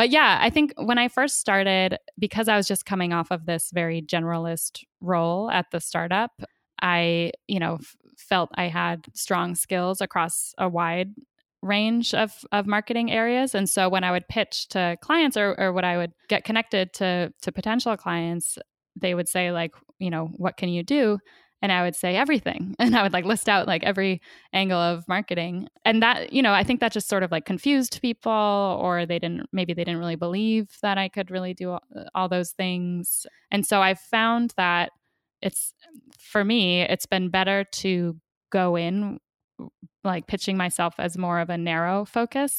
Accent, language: American, English